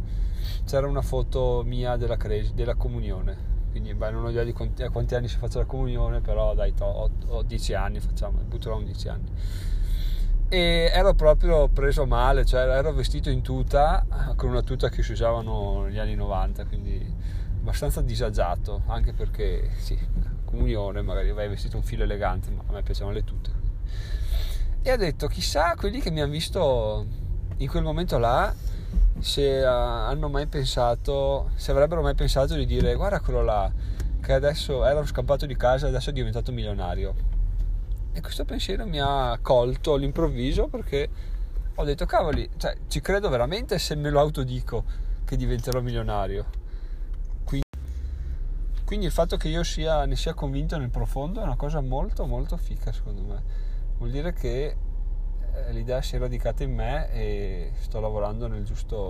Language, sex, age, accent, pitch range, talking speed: Italian, male, 30-49, native, 95-130 Hz, 165 wpm